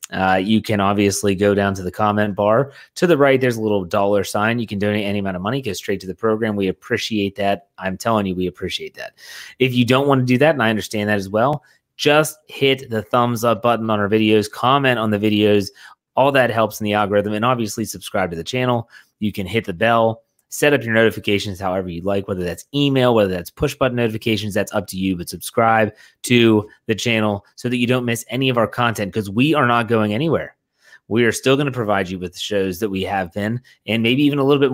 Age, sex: 30-49, male